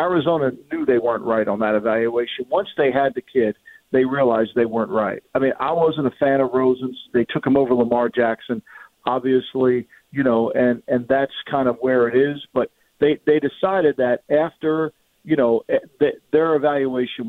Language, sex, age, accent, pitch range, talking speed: English, male, 50-69, American, 130-185 Hz, 185 wpm